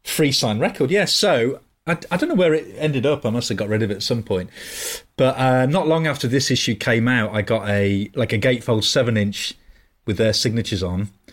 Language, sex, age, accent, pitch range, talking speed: English, male, 30-49, British, 110-145 Hz, 235 wpm